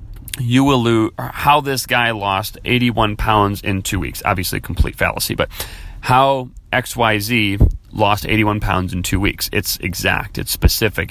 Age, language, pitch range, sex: 30-49, English, 100-120 Hz, male